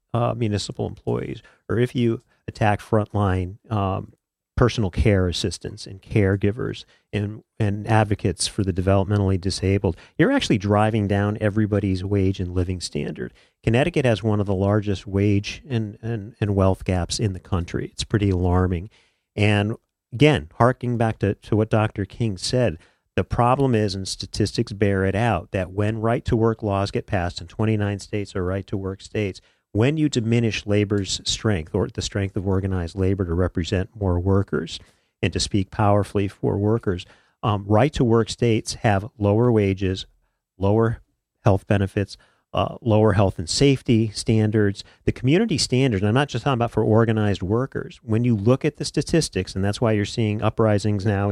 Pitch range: 95-115 Hz